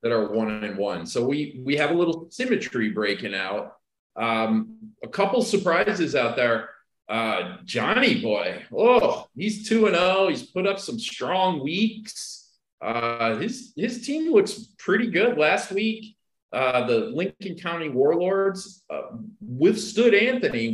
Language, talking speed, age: English, 150 wpm, 40-59